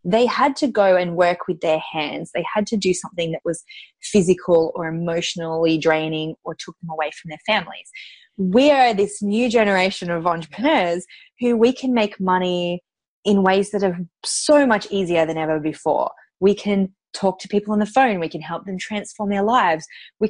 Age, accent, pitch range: 20-39, Australian, 170-235 Hz